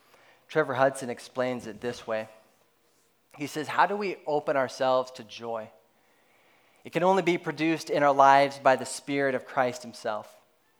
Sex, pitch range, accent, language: male, 115-130 Hz, American, English